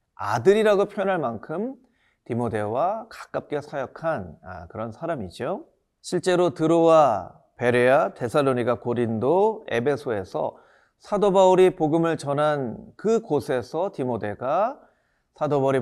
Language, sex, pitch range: Korean, male, 120-180 Hz